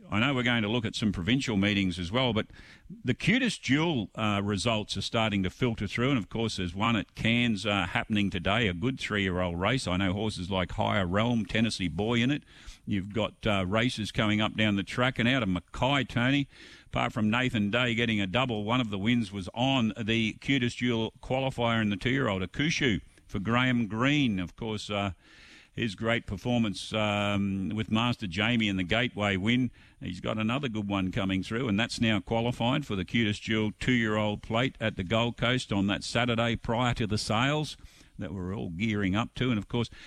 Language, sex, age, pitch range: English, male, 50-69, 100-120 Hz